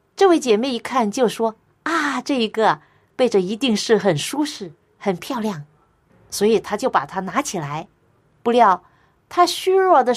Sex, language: female, Chinese